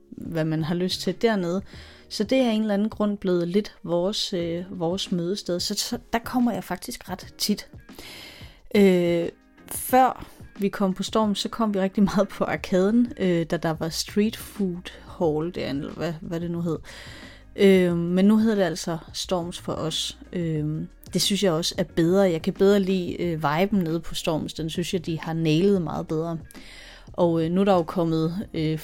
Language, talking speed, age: Danish, 200 wpm, 30-49